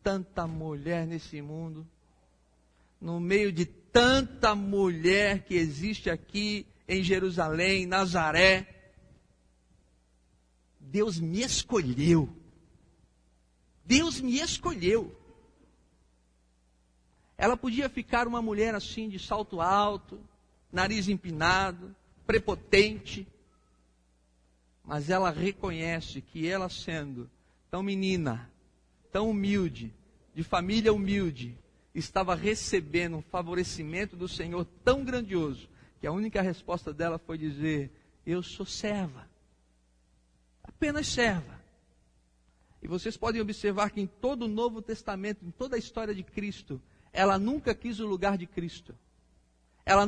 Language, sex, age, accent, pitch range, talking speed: Portuguese, male, 50-69, Brazilian, 130-210 Hz, 110 wpm